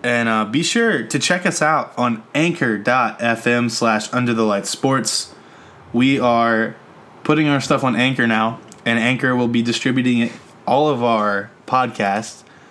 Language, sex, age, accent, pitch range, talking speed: English, male, 20-39, American, 105-125 Hz, 150 wpm